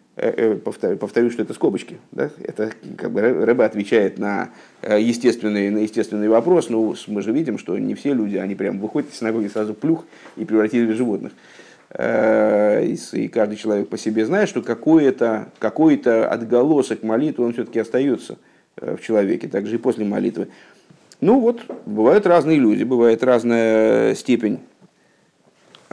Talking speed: 145 wpm